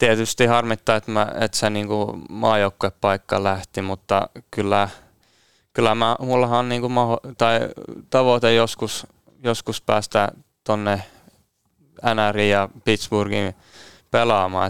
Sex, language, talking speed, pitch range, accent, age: male, Finnish, 100 wpm, 100-110 Hz, native, 20-39